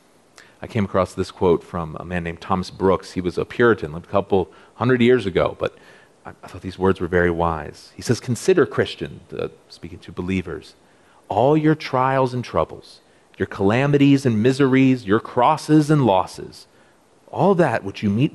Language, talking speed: English, 180 wpm